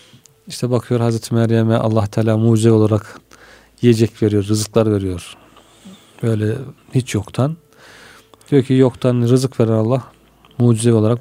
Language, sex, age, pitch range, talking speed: Turkish, male, 40-59, 115-135 Hz, 125 wpm